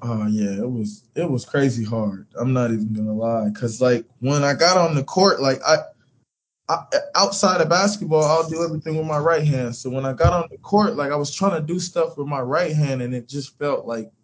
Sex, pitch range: male, 120-150 Hz